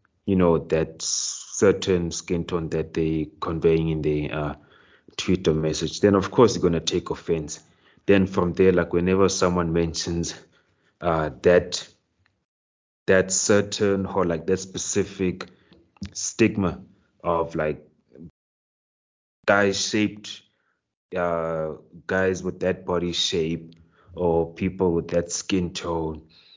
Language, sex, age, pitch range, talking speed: English, male, 30-49, 80-95 Hz, 120 wpm